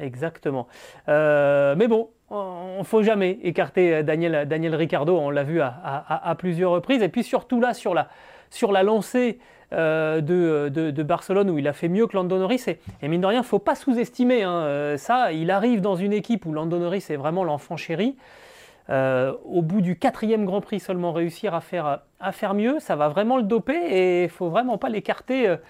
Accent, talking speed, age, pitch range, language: French, 215 wpm, 30-49, 155-210 Hz, French